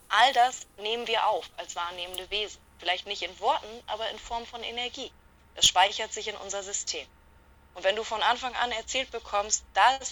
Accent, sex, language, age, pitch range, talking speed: German, female, German, 20-39, 180-230 Hz, 195 wpm